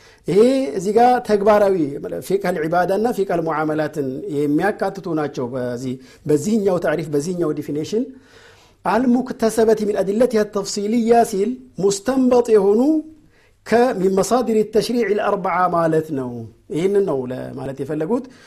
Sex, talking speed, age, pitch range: male, 100 wpm, 50-69, 155-245 Hz